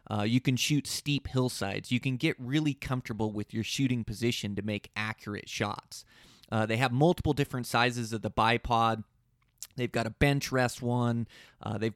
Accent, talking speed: American, 180 wpm